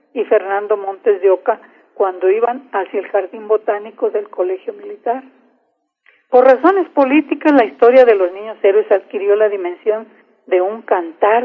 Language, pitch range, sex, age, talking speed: Spanish, 215-275 Hz, female, 50-69, 150 wpm